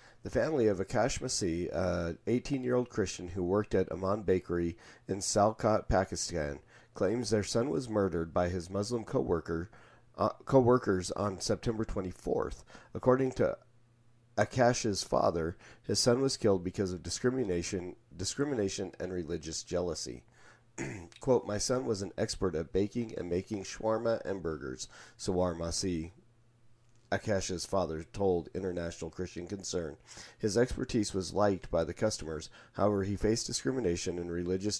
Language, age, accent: English, 40-59, American